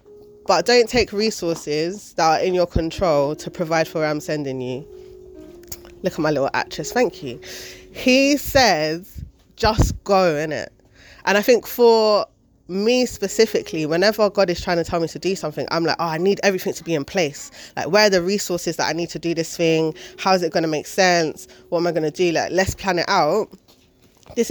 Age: 20-39